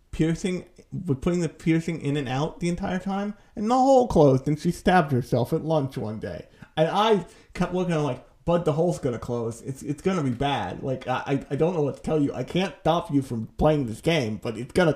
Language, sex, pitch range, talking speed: English, male, 130-170 Hz, 235 wpm